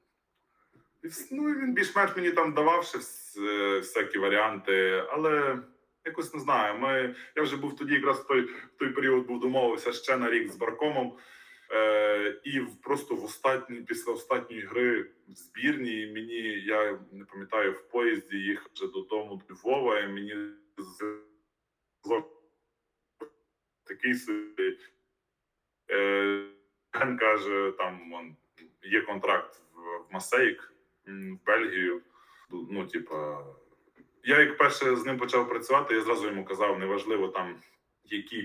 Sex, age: male, 20-39